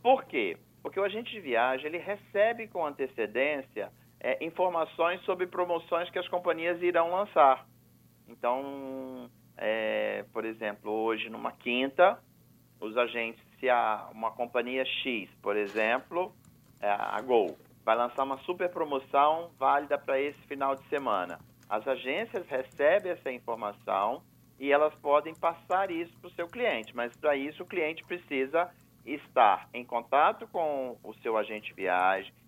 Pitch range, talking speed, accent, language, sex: 120-175 Hz, 145 wpm, Brazilian, Portuguese, male